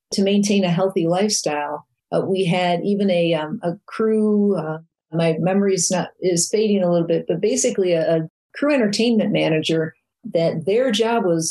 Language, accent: English, American